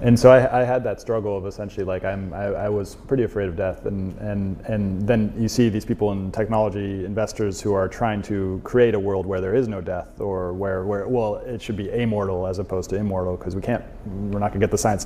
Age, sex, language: 30-49, male, English